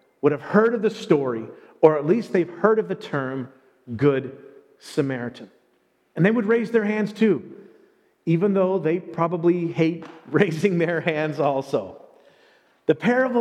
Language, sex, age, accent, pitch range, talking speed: English, male, 40-59, American, 165-225 Hz, 150 wpm